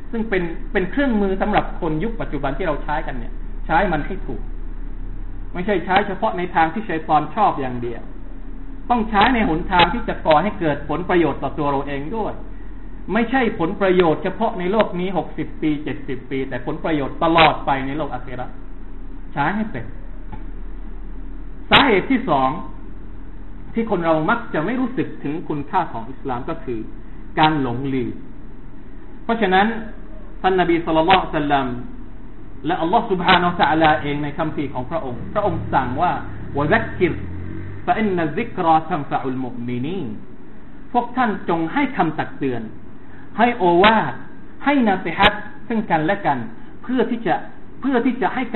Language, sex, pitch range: Thai, male, 145-210 Hz